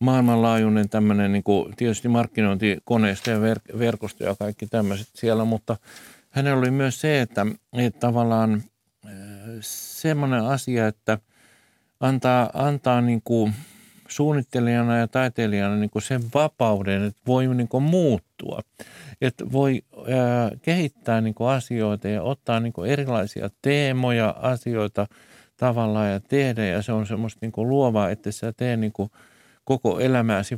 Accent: native